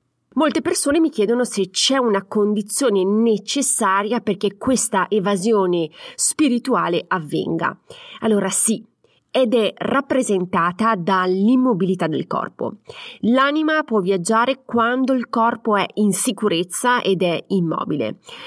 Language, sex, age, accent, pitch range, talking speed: Italian, female, 30-49, native, 180-240 Hz, 110 wpm